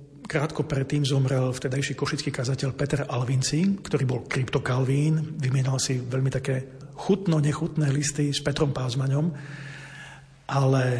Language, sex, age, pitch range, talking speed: Slovak, male, 40-59, 130-150 Hz, 115 wpm